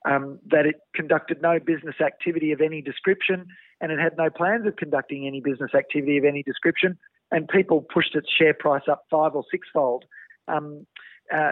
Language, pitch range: English, 150-190 Hz